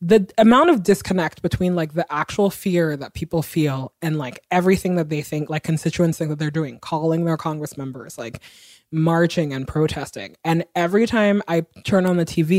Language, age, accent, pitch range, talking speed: English, 20-39, American, 155-195 Hz, 190 wpm